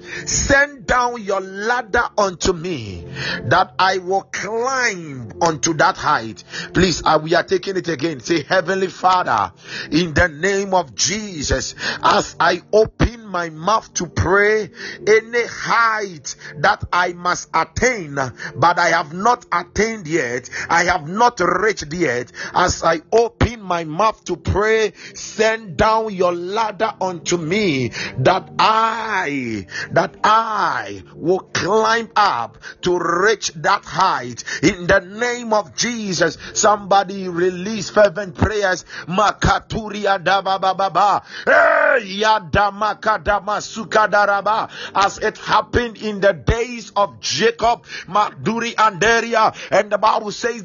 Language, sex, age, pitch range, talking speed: English, male, 50-69, 175-220 Hz, 115 wpm